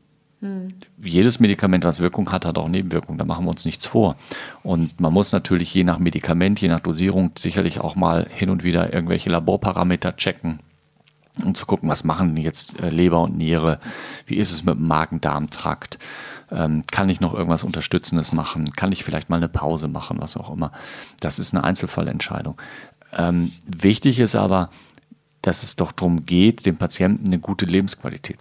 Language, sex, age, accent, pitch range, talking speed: German, male, 40-59, German, 80-95 Hz, 170 wpm